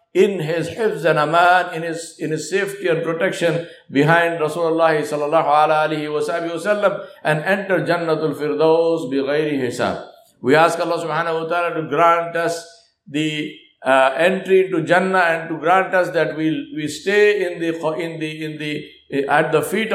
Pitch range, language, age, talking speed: 155-190 Hz, English, 60-79, 160 wpm